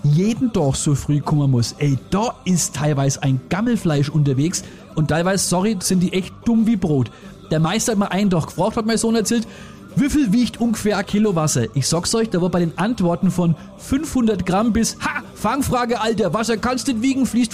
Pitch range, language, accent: 160-225 Hz, German, German